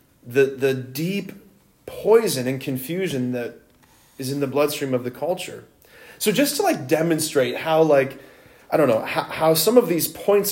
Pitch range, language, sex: 140-215 Hz, English, male